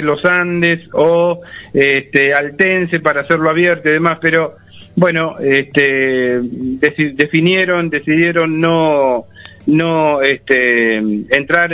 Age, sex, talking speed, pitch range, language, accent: 40-59, male, 80 wpm, 135-170 Hz, Spanish, Argentinian